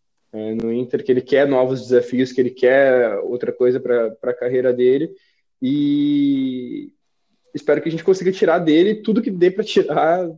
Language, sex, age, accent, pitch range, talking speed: Portuguese, male, 20-39, Brazilian, 140-180 Hz, 170 wpm